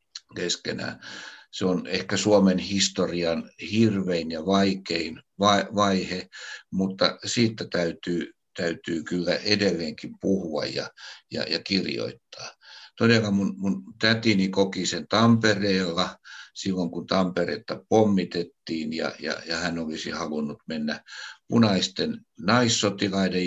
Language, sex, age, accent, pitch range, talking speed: Finnish, male, 60-79, native, 85-105 Hz, 100 wpm